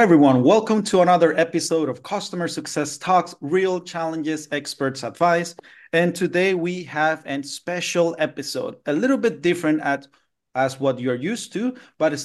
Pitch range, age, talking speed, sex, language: 130-170 Hz, 30-49, 155 wpm, male, English